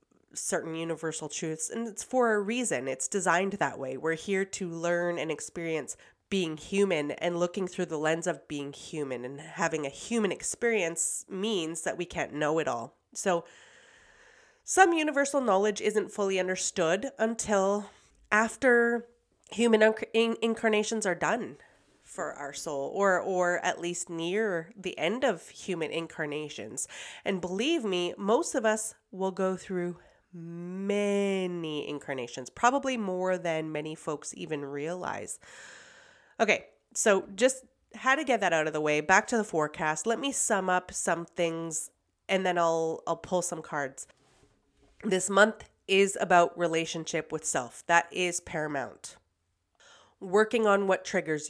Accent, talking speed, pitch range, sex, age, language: American, 150 wpm, 160-210 Hz, female, 30-49, English